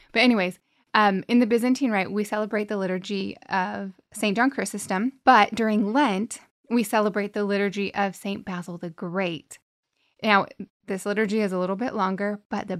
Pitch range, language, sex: 190-235 Hz, English, female